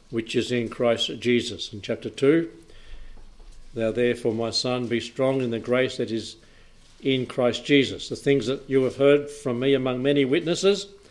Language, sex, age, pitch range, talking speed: English, male, 60-79, 125-150 Hz, 180 wpm